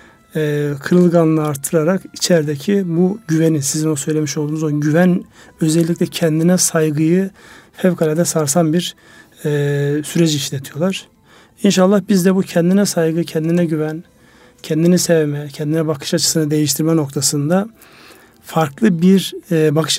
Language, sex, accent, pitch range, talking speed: Turkish, male, native, 150-175 Hz, 120 wpm